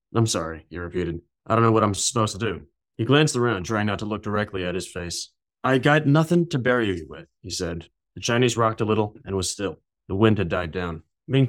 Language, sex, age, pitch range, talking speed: English, male, 30-49, 90-110 Hz, 240 wpm